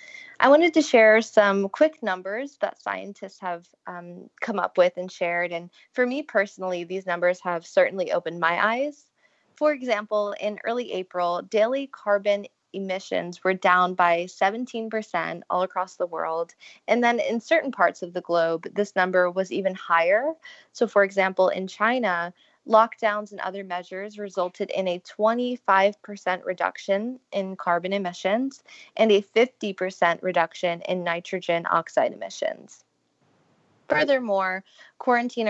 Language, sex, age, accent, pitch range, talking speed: English, female, 20-39, American, 180-230 Hz, 140 wpm